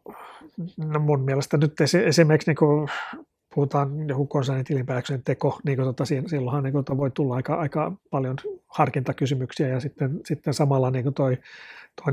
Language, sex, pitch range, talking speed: Finnish, male, 130-150 Hz, 135 wpm